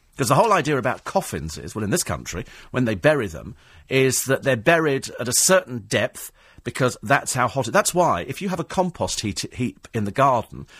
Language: English